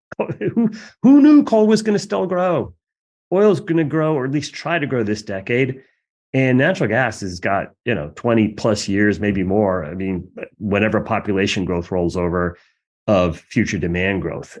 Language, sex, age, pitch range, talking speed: English, male, 30-49, 105-155 Hz, 180 wpm